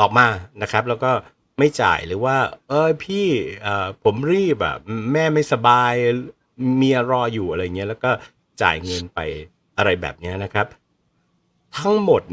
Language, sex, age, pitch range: Thai, male, 60-79, 90-135 Hz